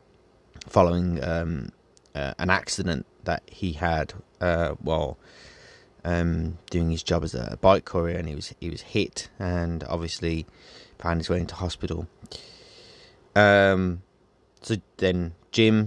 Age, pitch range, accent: 20-39, 85-95 Hz, British